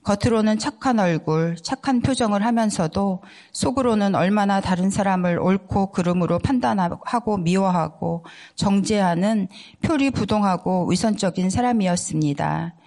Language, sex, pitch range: Korean, female, 175-205 Hz